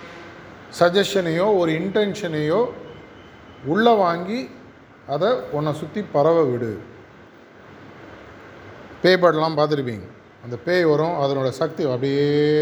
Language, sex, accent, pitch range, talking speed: Tamil, male, native, 140-180 Hz, 85 wpm